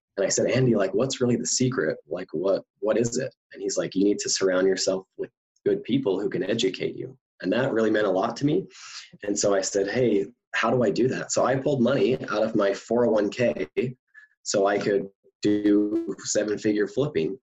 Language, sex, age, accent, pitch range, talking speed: English, male, 20-39, American, 100-125 Hz, 210 wpm